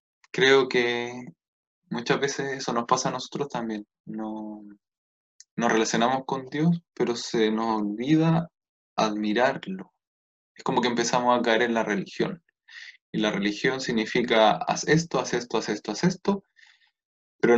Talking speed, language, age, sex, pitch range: 140 wpm, Spanish, 20-39, male, 105-150 Hz